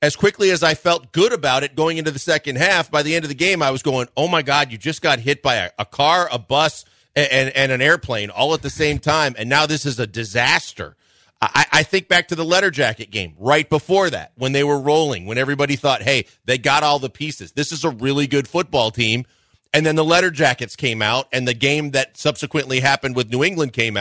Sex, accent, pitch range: male, American, 135-170 Hz